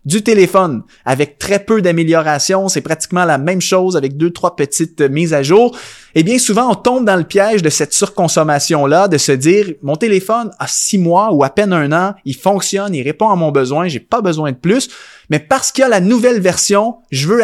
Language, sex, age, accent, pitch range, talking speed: French, male, 20-39, Canadian, 150-210 Hz, 220 wpm